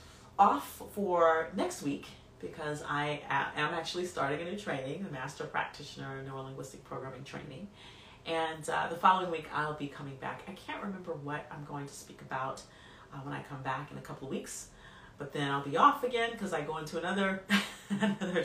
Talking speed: 190 wpm